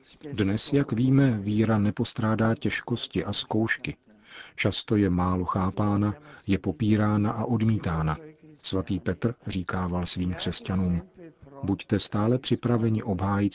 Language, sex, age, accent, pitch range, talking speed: Czech, male, 40-59, native, 95-110 Hz, 110 wpm